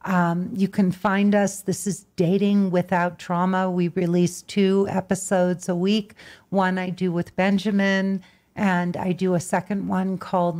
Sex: female